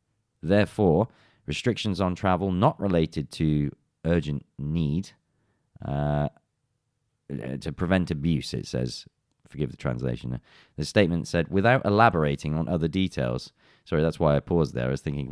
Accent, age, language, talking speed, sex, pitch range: British, 20-39, English, 135 wpm, male, 75-95 Hz